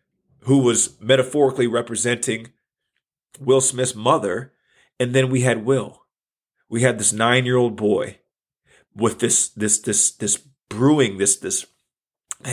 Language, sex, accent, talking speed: English, male, American, 135 wpm